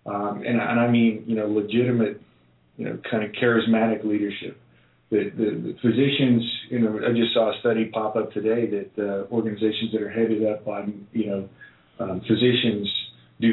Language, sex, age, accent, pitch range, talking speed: English, male, 40-59, American, 110-125 Hz, 180 wpm